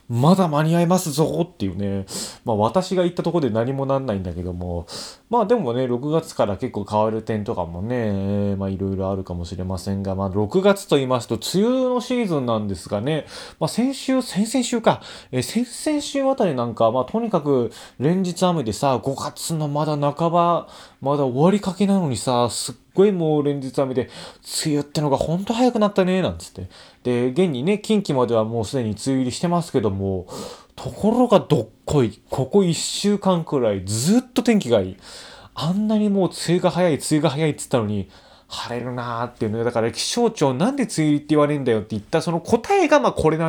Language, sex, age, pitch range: Japanese, male, 20-39, 115-185 Hz